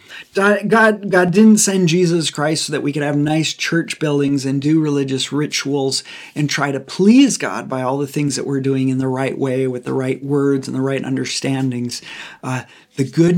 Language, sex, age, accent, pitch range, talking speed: English, male, 40-59, American, 130-155 Hz, 200 wpm